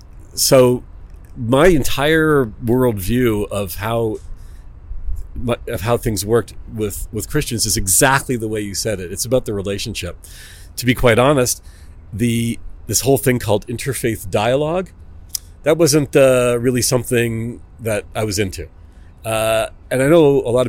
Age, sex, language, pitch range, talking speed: 40-59, male, English, 95-130 Hz, 150 wpm